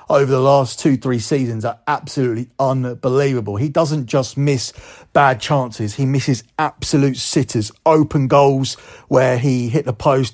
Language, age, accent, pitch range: English, 40-59, British, 125-145 Hz